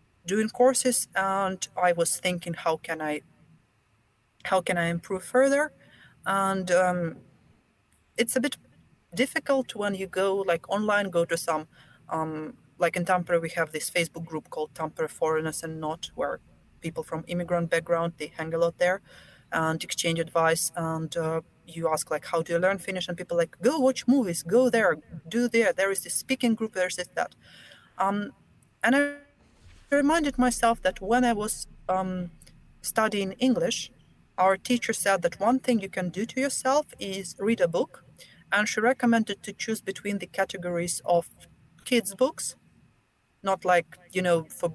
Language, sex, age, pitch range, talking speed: English, female, 30-49, 165-230 Hz, 170 wpm